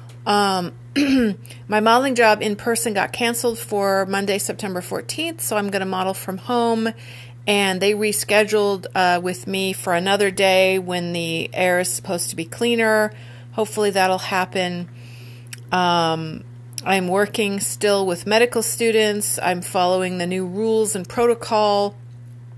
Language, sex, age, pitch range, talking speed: English, female, 40-59, 170-210 Hz, 140 wpm